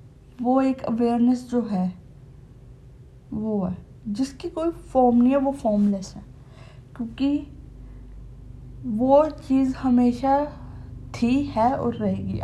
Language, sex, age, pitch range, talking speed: Hindi, female, 20-39, 185-255 Hz, 110 wpm